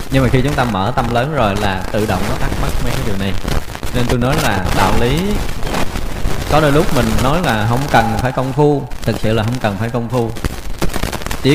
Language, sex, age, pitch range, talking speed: Vietnamese, male, 20-39, 105-140 Hz, 235 wpm